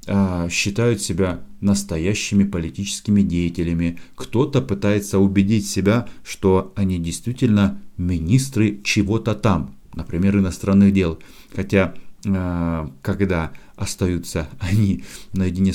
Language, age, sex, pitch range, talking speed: Russian, 50-69, male, 90-110 Hz, 90 wpm